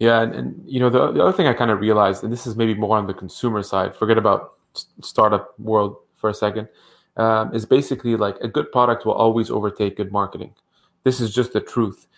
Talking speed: 230 wpm